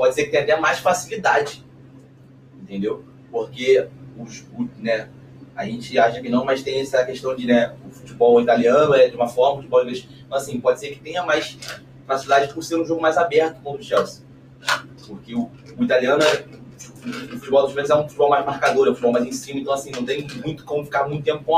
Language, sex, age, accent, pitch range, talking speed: Portuguese, male, 20-39, Brazilian, 130-165 Hz, 215 wpm